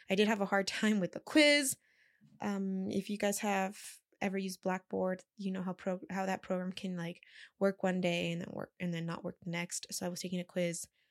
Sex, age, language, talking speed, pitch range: female, 20-39, English, 240 wpm, 175-215 Hz